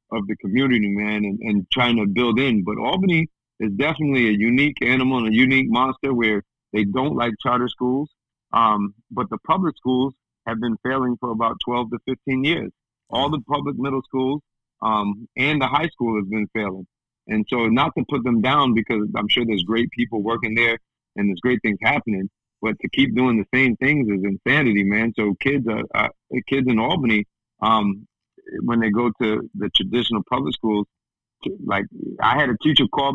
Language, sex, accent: English, male, American